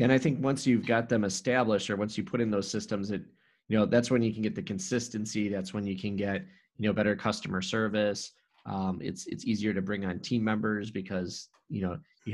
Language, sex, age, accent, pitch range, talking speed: English, male, 20-39, American, 95-105 Hz, 235 wpm